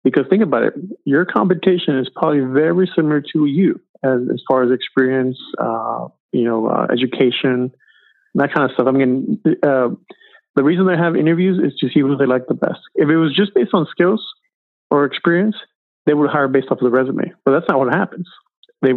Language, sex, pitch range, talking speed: English, male, 130-160 Hz, 210 wpm